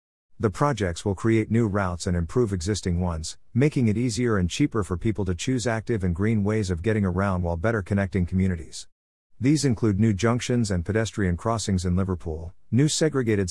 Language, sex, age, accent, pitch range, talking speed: English, male, 50-69, American, 90-115 Hz, 180 wpm